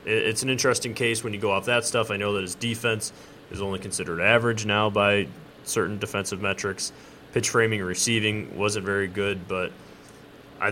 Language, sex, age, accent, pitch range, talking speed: English, male, 20-39, American, 100-115 Hz, 185 wpm